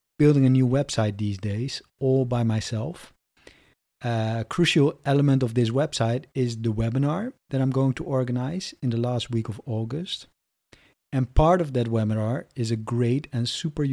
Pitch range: 115-155 Hz